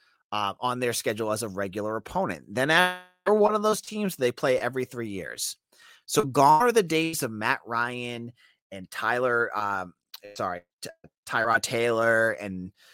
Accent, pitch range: American, 110-160 Hz